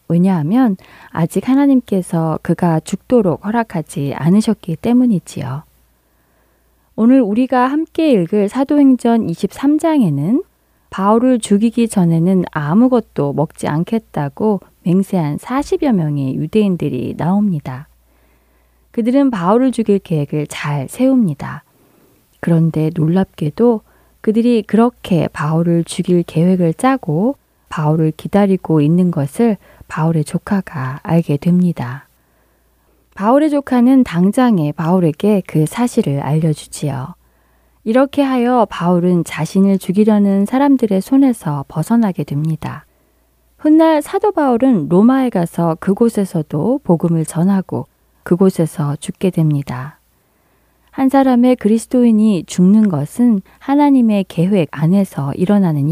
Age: 20-39